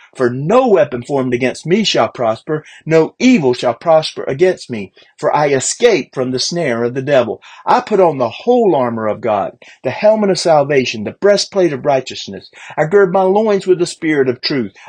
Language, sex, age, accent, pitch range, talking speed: English, male, 40-59, American, 125-190 Hz, 195 wpm